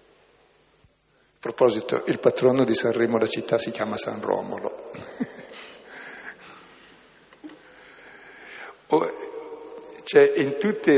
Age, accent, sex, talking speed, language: 60-79, native, male, 85 wpm, Italian